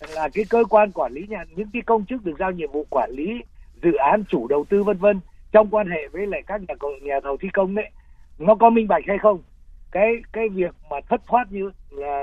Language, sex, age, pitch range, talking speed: Vietnamese, male, 60-79, 150-215 Hz, 245 wpm